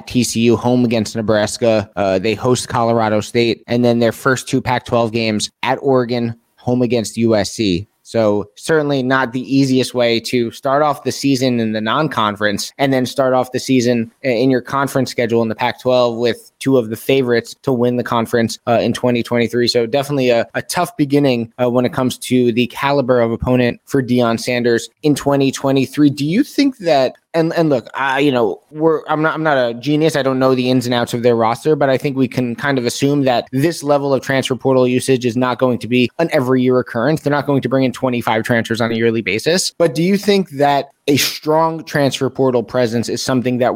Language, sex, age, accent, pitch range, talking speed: English, male, 20-39, American, 115-135 Hz, 215 wpm